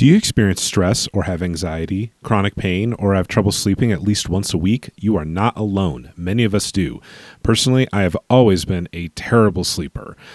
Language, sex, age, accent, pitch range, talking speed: English, male, 30-49, American, 95-120 Hz, 195 wpm